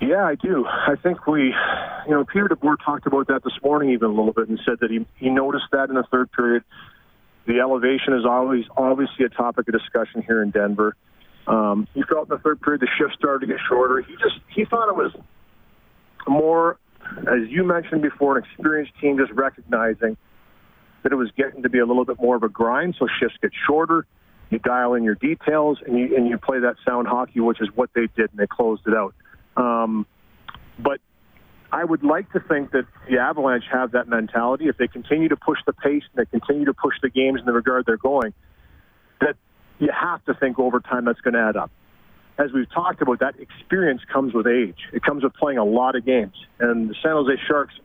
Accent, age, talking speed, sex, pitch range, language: American, 40-59, 220 wpm, male, 115-140 Hz, English